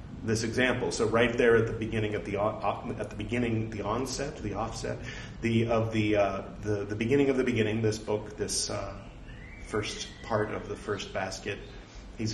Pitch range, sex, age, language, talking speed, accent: 100-115 Hz, male, 40-59, English, 185 wpm, American